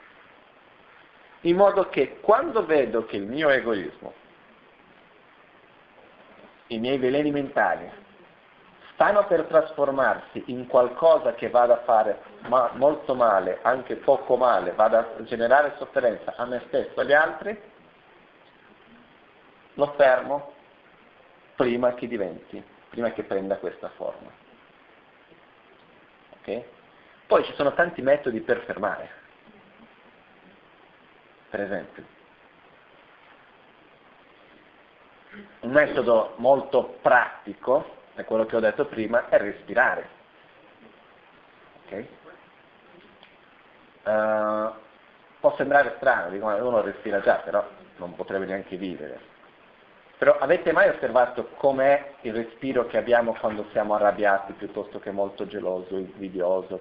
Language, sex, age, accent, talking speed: Italian, male, 50-69, native, 105 wpm